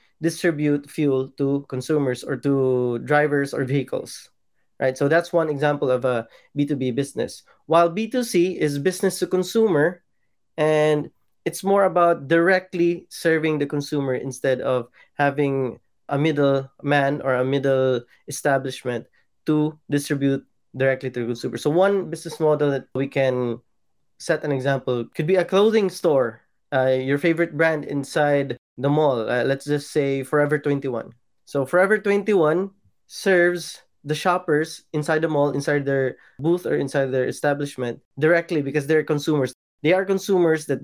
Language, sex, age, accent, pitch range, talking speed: Filipino, male, 20-39, native, 135-165 Hz, 145 wpm